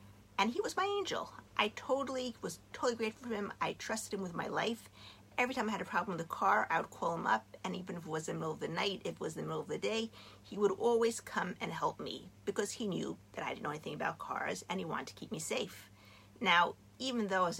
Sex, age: female, 50-69